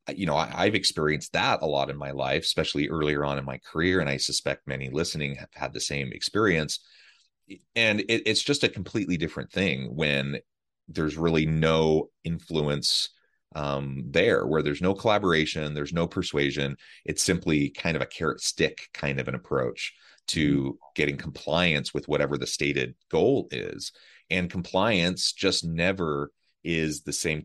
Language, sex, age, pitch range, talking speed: English, male, 30-49, 70-95 Hz, 165 wpm